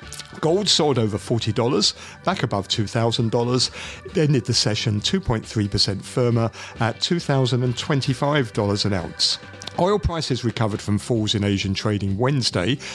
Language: English